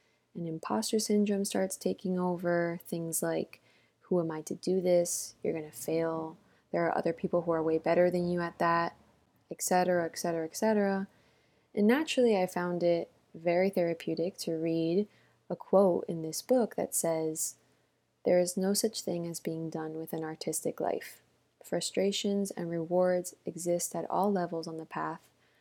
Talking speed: 165 wpm